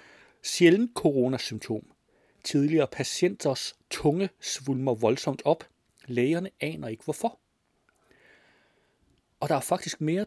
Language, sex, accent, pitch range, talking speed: Danish, male, native, 130-175 Hz, 100 wpm